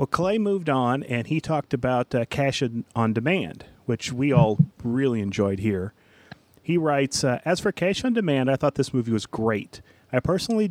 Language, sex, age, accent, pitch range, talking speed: English, male, 40-59, American, 120-155 Hz, 190 wpm